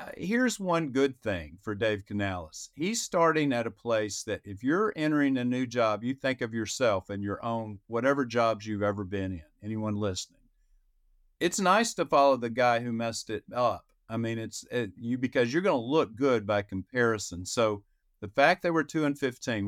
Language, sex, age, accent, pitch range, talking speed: English, male, 50-69, American, 100-125 Hz, 200 wpm